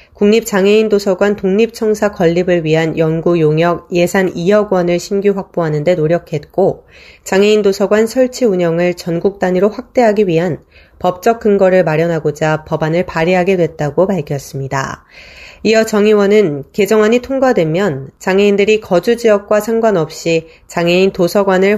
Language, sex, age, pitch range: Korean, female, 30-49, 170-215 Hz